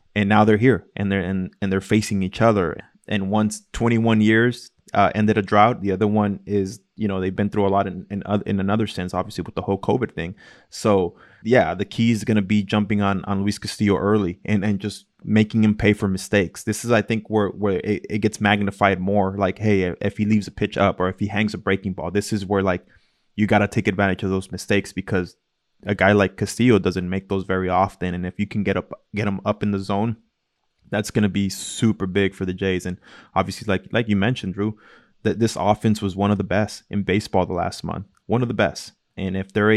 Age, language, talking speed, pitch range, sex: 20-39, English, 240 wpm, 95-105 Hz, male